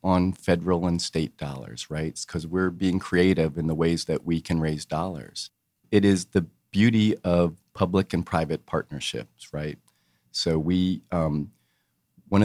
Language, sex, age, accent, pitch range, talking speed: English, male, 40-59, American, 80-95 Hz, 155 wpm